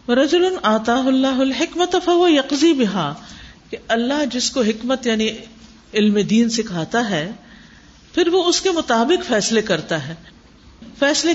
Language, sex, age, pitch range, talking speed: Urdu, female, 50-69, 205-265 Hz, 130 wpm